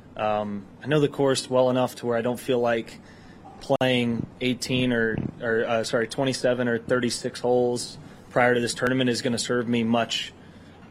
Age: 20-39